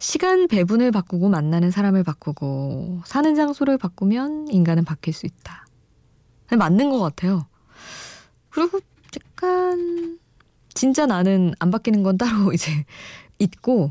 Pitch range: 155-215 Hz